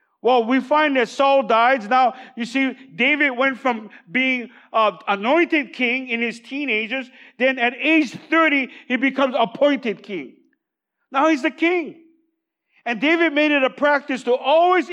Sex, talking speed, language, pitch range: male, 155 wpm, English, 225-275 Hz